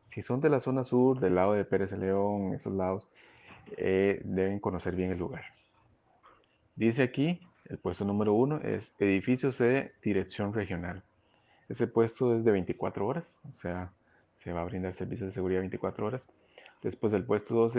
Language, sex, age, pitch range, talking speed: Spanish, male, 30-49, 95-120 Hz, 175 wpm